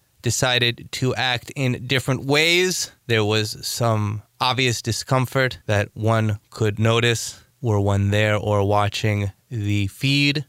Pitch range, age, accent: 120-180 Hz, 20-39, American